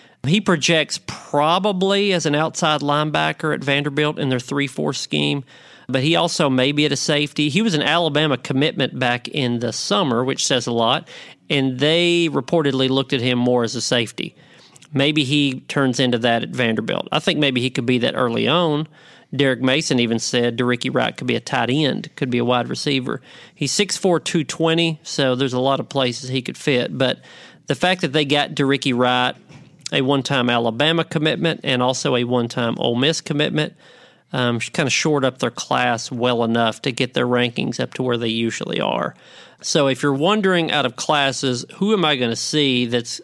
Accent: American